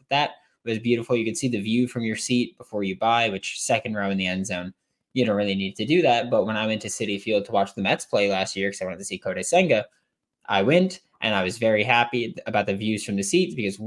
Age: 20-39